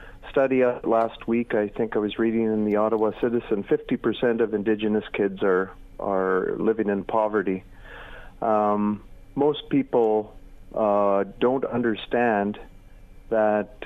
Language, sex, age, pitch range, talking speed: English, male, 40-59, 100-115 Hz, 125 wpm